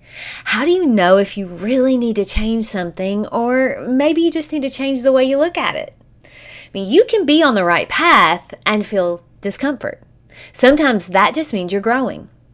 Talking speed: 200 wpm